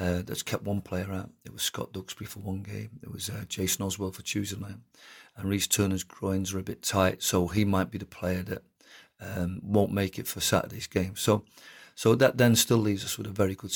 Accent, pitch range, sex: British, 95-105 Hz, male